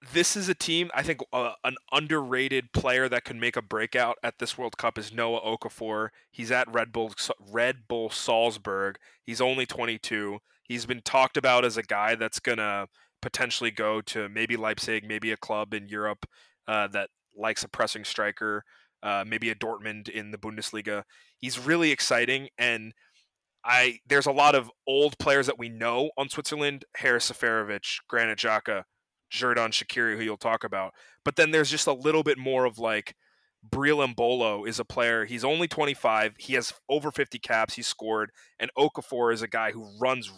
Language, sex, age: English, male, 20-39